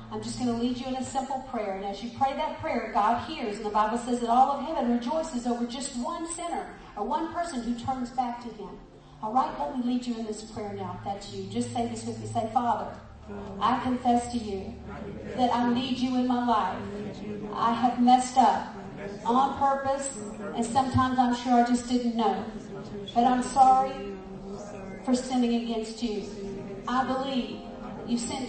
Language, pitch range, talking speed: English, 210-265 Hz, 200 wpm